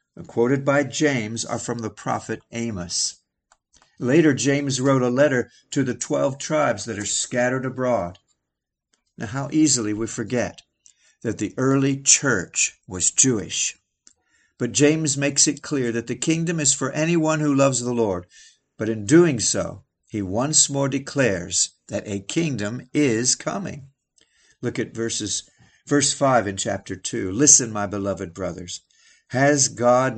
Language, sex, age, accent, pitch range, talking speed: English, male, 50-69, American, 105-140 Hz, 145 wpm